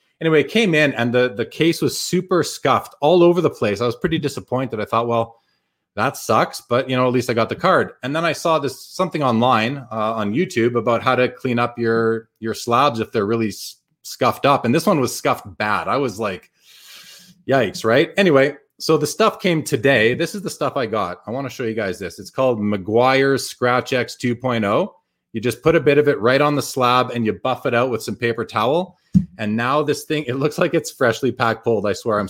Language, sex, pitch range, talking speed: English, male, 115-150 Hz, 235 wpm